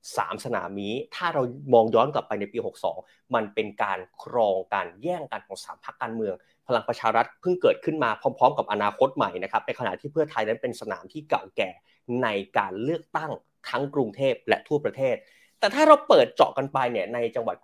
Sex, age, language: male, 30-49, Thai